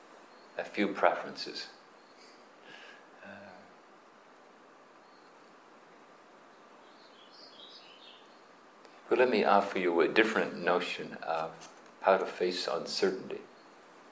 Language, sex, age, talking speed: English, male, 50-69, 70 wpm